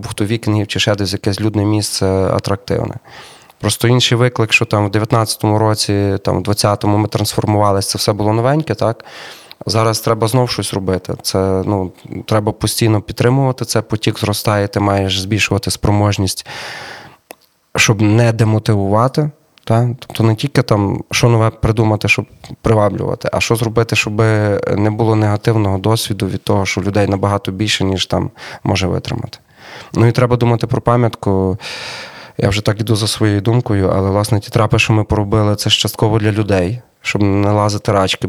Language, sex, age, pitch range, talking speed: Ukrainian, male, 20-39, 100-115 Hz, 165 wpm